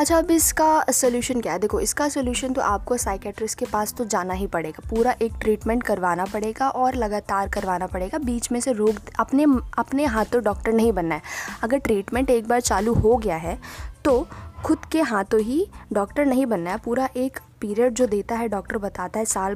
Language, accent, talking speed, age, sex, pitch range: Hindi, native, 205 wpm, 20-39, female, 205-250 Hz